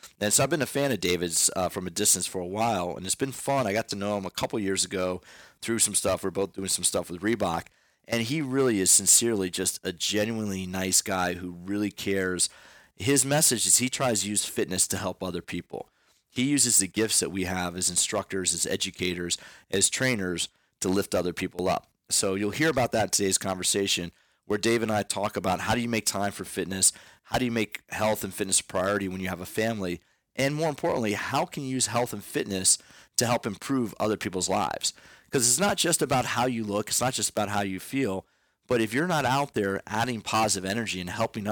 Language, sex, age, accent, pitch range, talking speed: English, male, 30-49, American, 95-120 Hz, 230 wpm